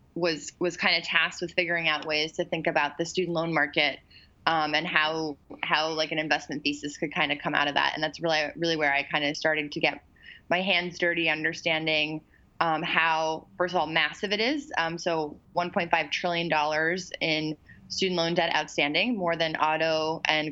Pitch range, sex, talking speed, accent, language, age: 155-175 Hz, female, 200 wpm, American, English, 20-39